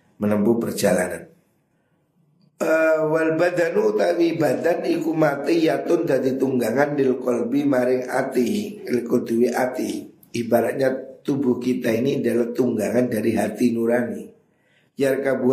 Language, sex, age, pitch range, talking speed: Indonesian, male, 50-69, 120-140 Hz, 95 wpm